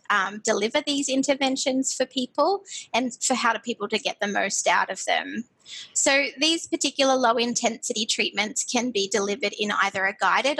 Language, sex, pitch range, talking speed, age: English, female, 200-260 Hz, 175 wpm, 20-39